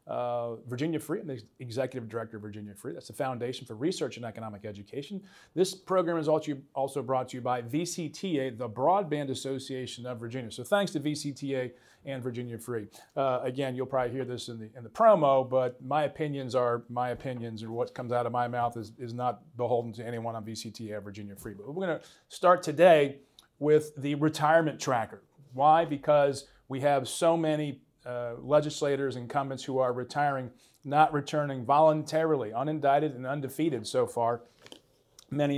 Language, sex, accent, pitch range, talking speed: English, male, American, 125-150 Hz, 175 wpm